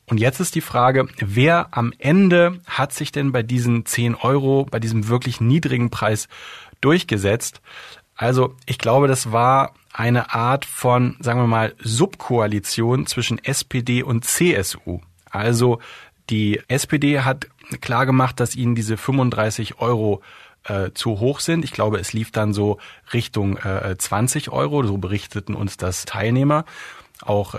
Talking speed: 145 wpm